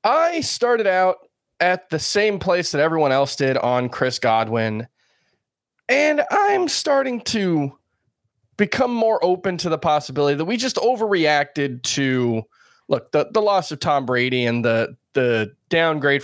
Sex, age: male, 20-39